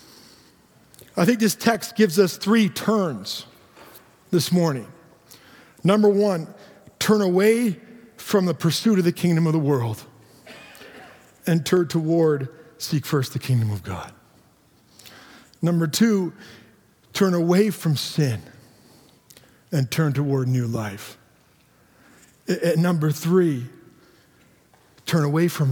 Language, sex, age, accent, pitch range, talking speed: English, male, 50-69, American, 140-205 Hz, 110 wpm